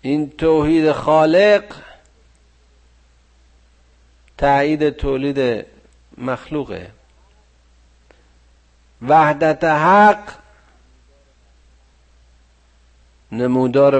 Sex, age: male, 50-69